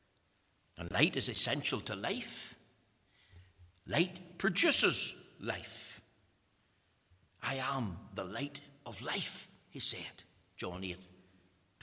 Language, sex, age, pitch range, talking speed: English, male, 60-79, 105-165 Hz, 95 wpm